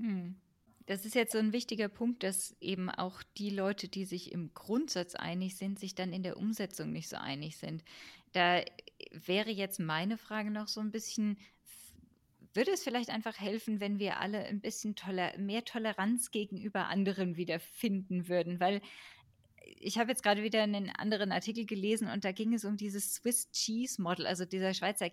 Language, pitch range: German, 190-220 Hz